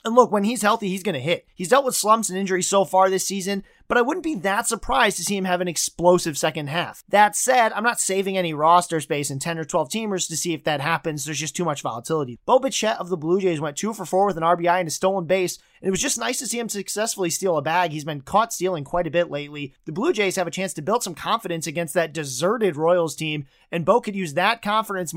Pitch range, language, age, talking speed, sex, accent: 165-205 Hz, English, 30-49, 270 wpm, male, American